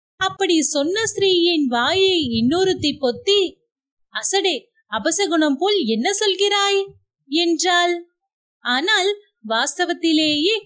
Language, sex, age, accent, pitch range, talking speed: Tamil, female, 30-49, native, 280-390 Hz, 80 wpm